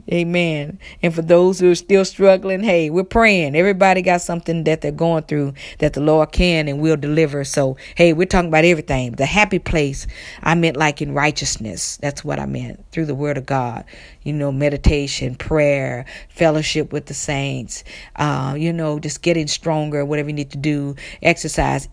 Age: 40-59